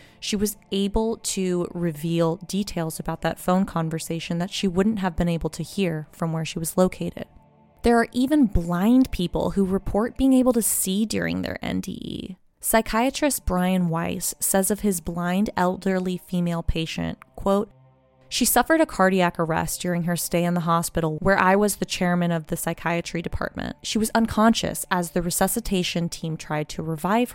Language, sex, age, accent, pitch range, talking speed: English, female, 20-39, American, 170-210 Hz, 170 wpm